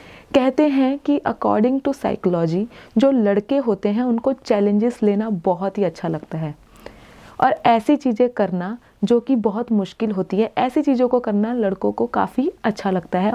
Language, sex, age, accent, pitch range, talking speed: Hindi, female, 30-49, native, 190-245 Hz, 170 wpm